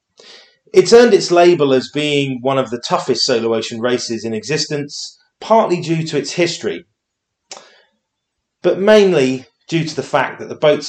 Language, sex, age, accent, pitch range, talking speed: English, male, 30-49, British, 135-175 Hz, 160 wpm